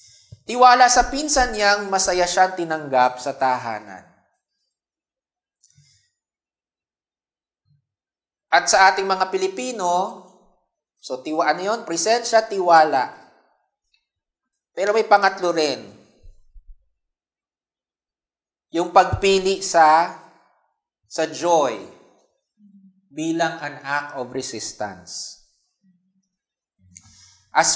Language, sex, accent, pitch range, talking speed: English, male, Filipino, 130-190 Hz, 75 wpm